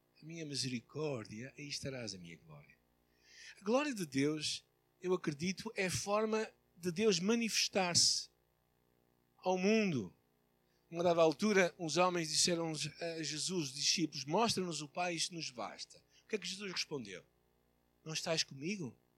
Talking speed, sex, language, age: 140 wpm, male, Portuguese, 60-79